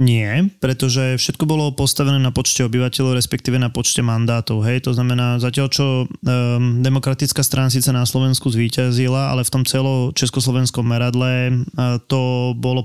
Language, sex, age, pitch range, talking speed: Slovak, male, 20-39, 125-140 Hz, 145 wpm